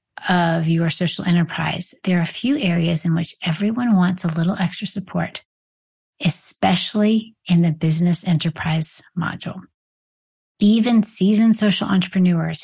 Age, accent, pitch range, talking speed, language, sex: 30-49, American, 160-185 Hz, 130 wpm, English, female